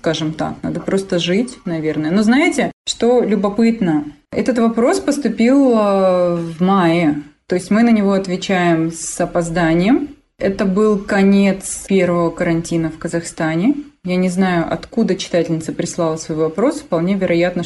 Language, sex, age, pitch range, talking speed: Russian, female, 20-39, 170-215 Hz, 135 wpm